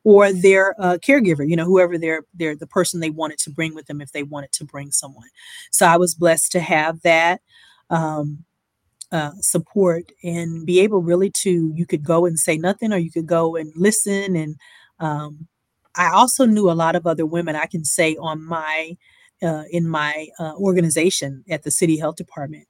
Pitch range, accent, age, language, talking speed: 155-180 Hz, American, 30-49, English, 200 wpm